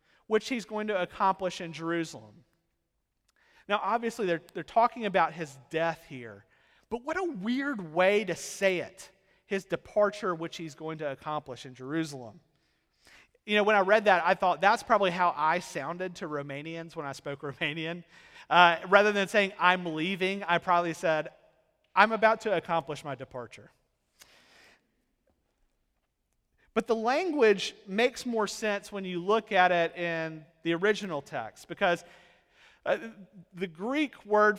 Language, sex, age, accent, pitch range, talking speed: English, male, 30-49, American, 160-210 Hz, 150 wpm